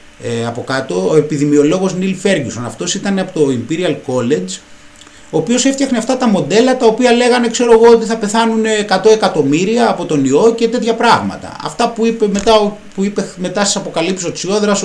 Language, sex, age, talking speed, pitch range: Greek, male, 30-49, 170 wpm, 145-225 Hz